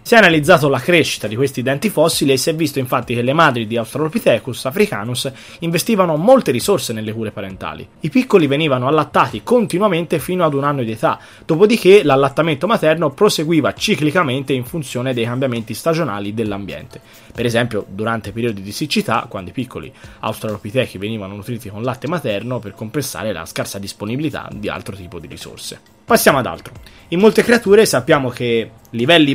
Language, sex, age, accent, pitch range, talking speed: Italian, male, 20-39, native, 115-165 Hz, 170 wpm